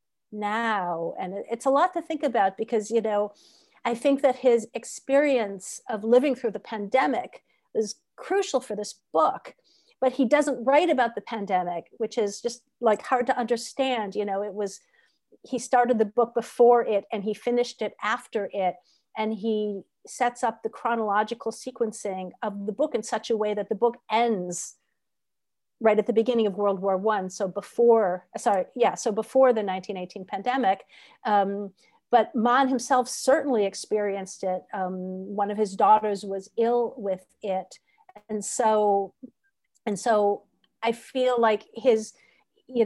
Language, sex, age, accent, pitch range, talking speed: English, female, 50-69, American, 200-245 Hz, 160 wpm